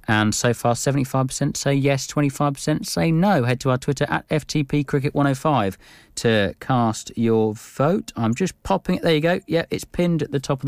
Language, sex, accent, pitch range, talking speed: English, male, British, 110-140 Hz, 195 wpm